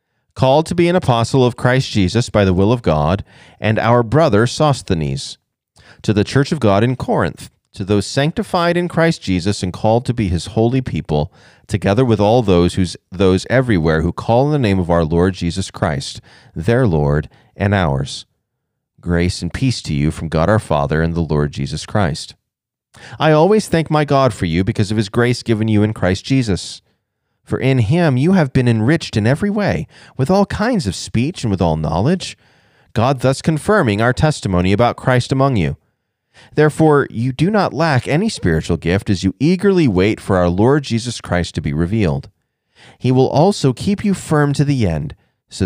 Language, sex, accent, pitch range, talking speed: English, male, American, 90-135 Hz, 190 wpm